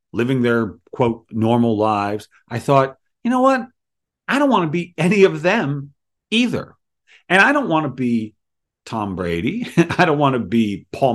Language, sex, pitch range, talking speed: English, male, 115-160 Hz, 180 wpm